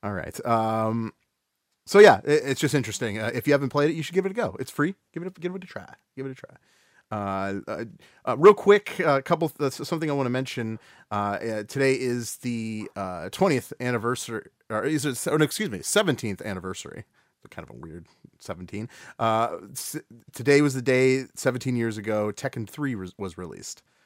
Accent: American